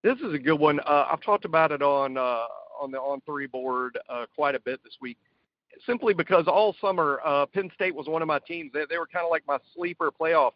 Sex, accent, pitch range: male, American, 155-245 Hz